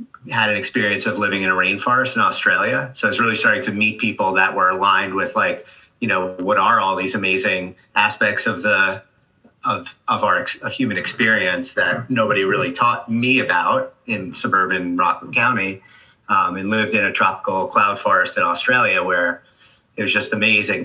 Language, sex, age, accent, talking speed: English, male, 30-49, American, 180 wpm